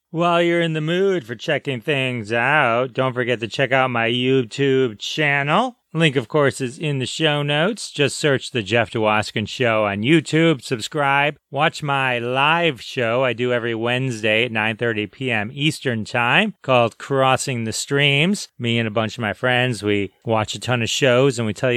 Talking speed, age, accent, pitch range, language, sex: 185 wpm, 30-49, American, 120-145 Hz, English, male